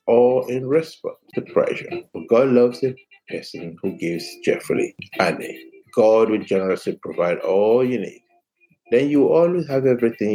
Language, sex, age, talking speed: English, male, 60-79, 160 wpm